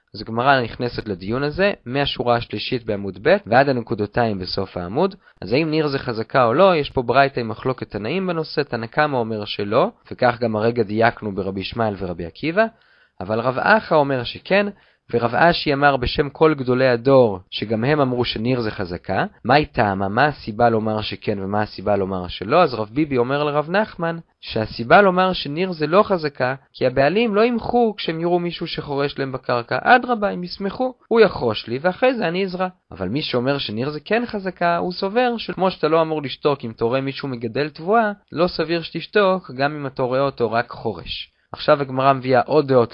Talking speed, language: 185 wpm, Hebrew